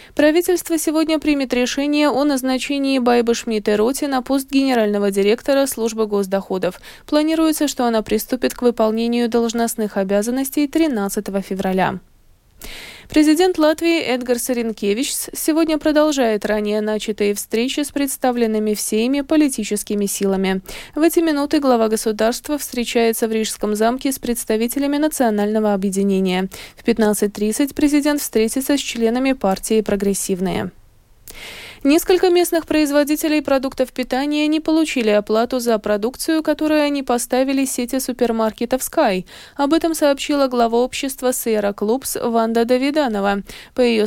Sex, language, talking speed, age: female, Russian, 120 wpm, 20-39